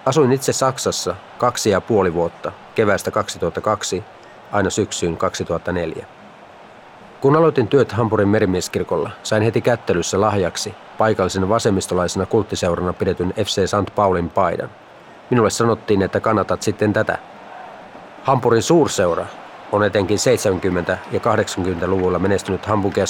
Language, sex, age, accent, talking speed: Finnish, male, 30-49, native, 115 wpm